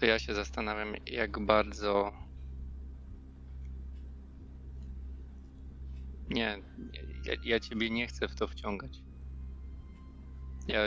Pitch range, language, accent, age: 65-100 Hz, Polish, native, 20-39